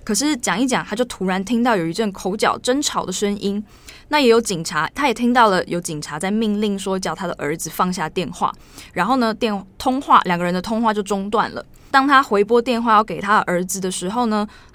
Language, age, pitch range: Chinese, 20-39, 190-235 Hz